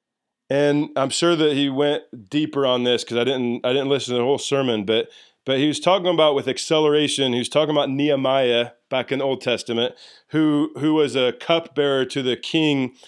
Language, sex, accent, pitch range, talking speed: English, male, American, 125-150 Hz, 205 wpm